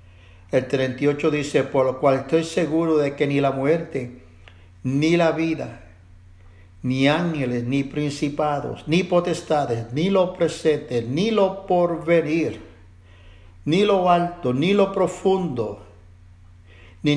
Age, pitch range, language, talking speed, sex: 60-79, 105-150 Hz, English, 120 wpm, male